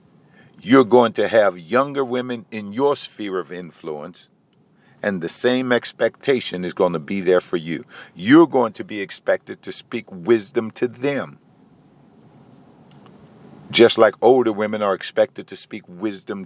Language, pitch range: English, 110-150 Hz